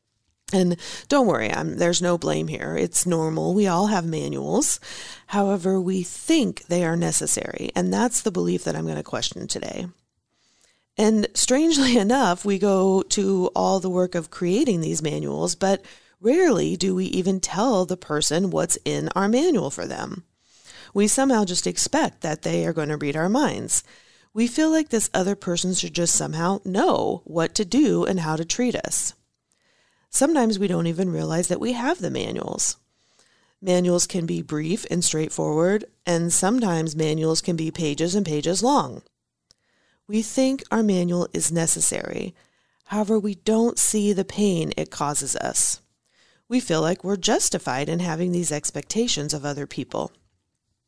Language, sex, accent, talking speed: English, female, American, 165 wpm